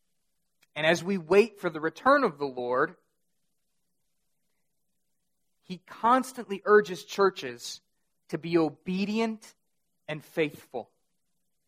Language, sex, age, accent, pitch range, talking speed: English, male, 30-49, American, 165-210 Hz, 100 wpm